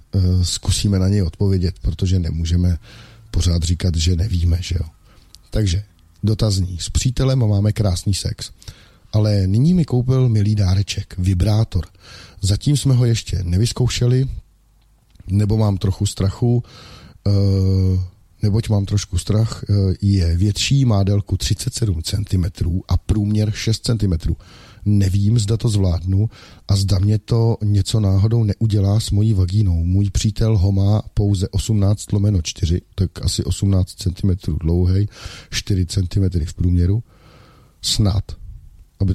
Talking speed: 125 wpm